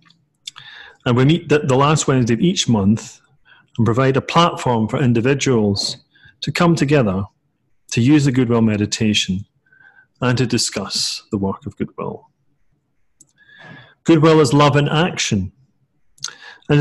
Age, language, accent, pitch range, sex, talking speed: 40-59, English, British, 115-150 Hz, male, 130 wpm